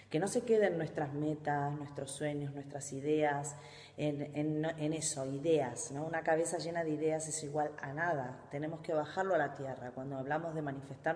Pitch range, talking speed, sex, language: 140-165 Hz, 190 wpm, female, Spanish